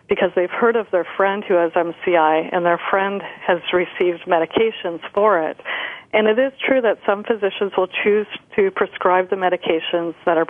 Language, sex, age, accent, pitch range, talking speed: English, female, 40-59, American, 170-205 Hz, 185 wpm